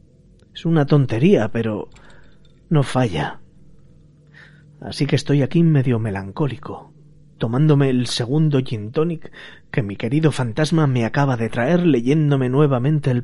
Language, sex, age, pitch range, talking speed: Spanish, male, 30-49, 115-145 Hz, 125 wpm